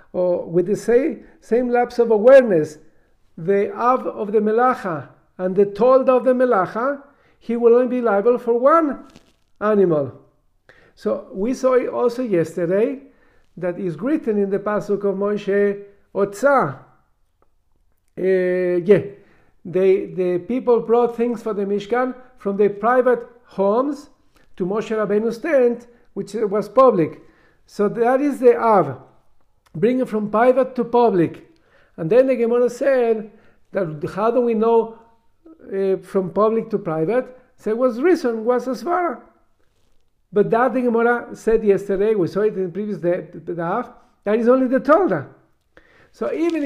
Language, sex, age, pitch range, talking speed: English, male, 50-69, 200-255 Hz, 150 wpm